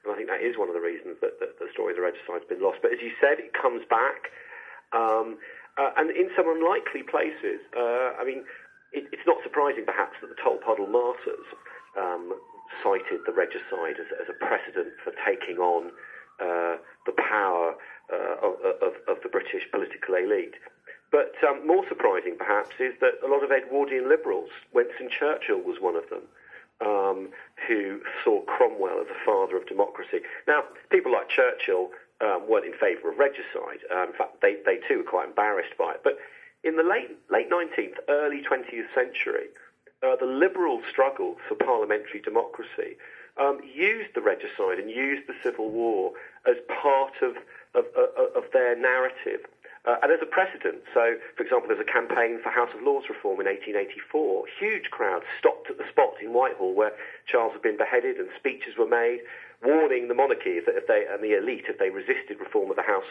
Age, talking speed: 40-59, 190 wpm